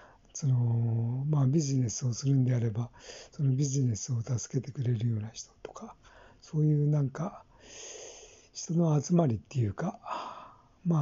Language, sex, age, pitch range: Japanese, male, 60-79, 125-160 Hz